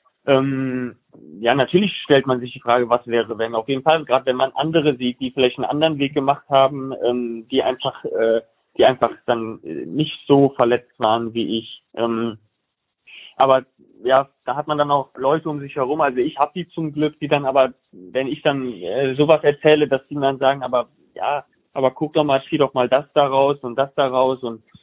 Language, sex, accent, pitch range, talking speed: German, male, German, 120-140 Hz, 210 wpm